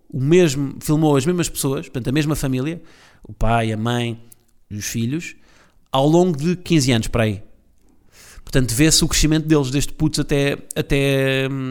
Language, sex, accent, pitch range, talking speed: Portuguese, male, Portuguese, 115-155 Hz, 165 wpm